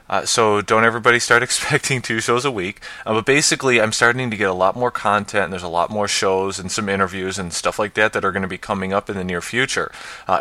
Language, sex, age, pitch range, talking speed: English, male, 20-39, 95-115 Hz, 285 wpm